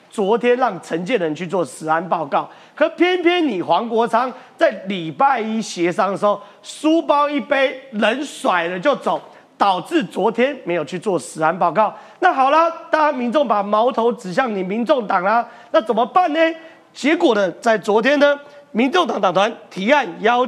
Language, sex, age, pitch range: Chinese, male, 30-49, 195-290 Hz